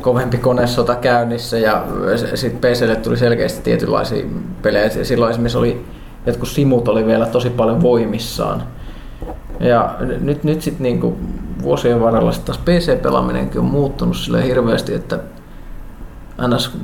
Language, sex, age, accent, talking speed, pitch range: Finnish, male, 20-39, native, 130 wpm, 105-135 Hz